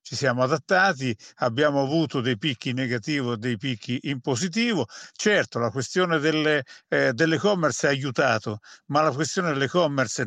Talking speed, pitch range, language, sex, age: 145 wpm, 125-160 Hz, Italian, male, 50-69